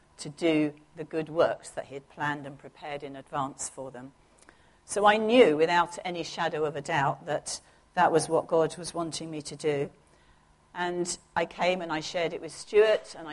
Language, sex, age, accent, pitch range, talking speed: English, female, 50-69, British, 150-175 Hz, 200 wpm